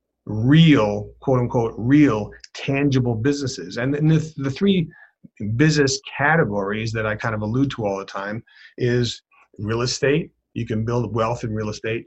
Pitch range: 115-140 Hz